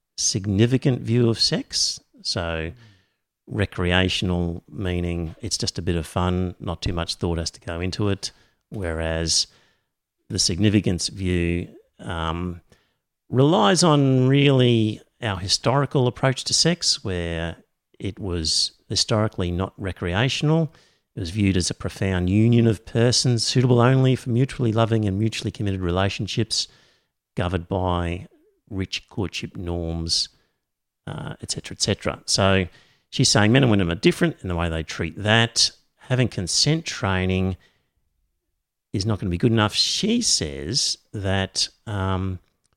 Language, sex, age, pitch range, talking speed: English, male, 50-69, 90-120 Hz, 135 wpm